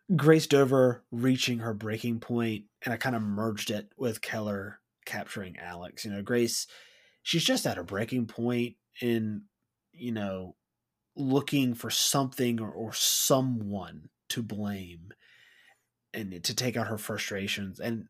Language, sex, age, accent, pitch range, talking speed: English, male, 30-49, American, 105-125 Hz, 145 wpm